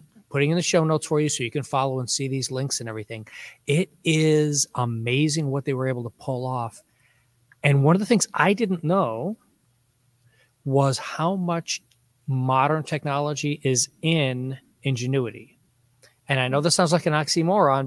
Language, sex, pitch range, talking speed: English, male, 120-155 Hz, 170 wpm